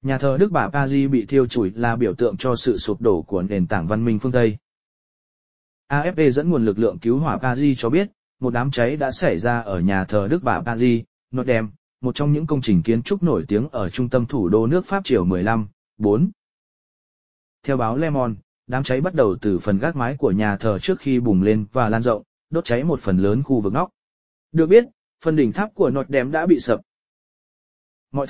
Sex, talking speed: male, 225 wpm